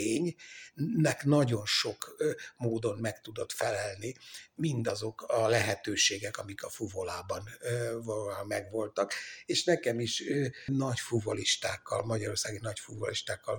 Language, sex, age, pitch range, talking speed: Hungarian, male, 60-79, 110-130 Hz, 105 wpm